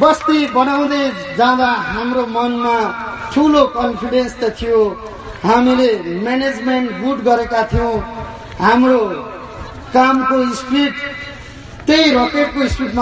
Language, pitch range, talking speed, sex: English, 230-280 Hz, 65 wpm, male